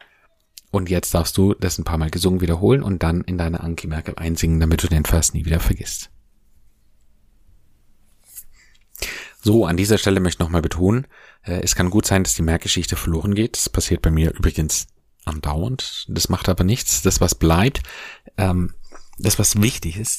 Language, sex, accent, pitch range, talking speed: German, male, German, 85-100 Hz, 170 wpm